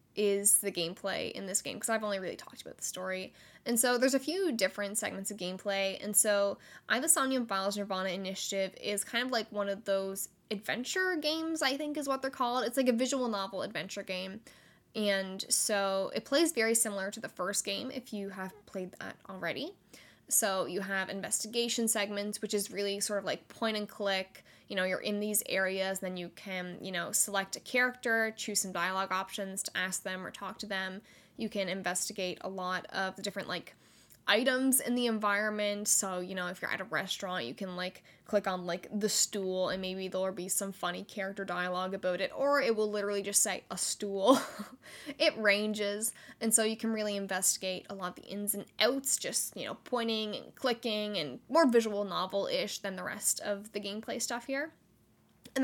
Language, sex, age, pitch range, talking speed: English, female, 10-29, 190-235 Hz, 205 wpm